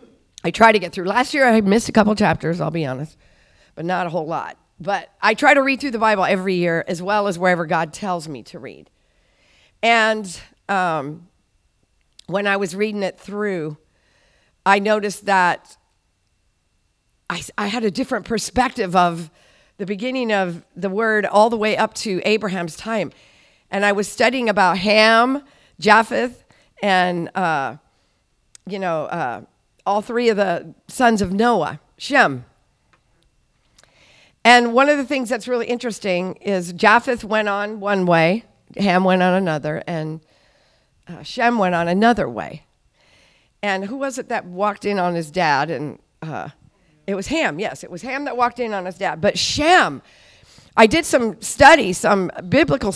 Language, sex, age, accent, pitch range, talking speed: English, female, 50-69, American, 175-230 Hz, 165 wpm